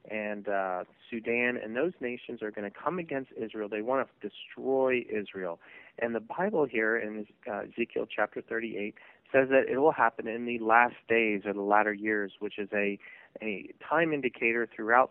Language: English